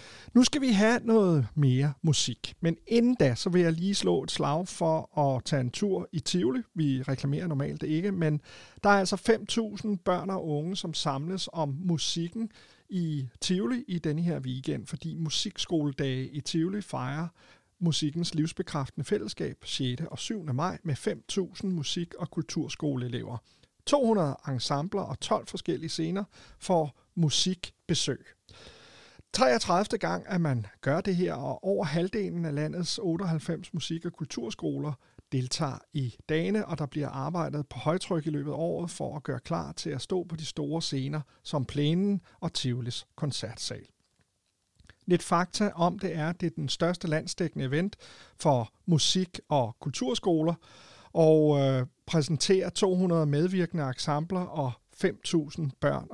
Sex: male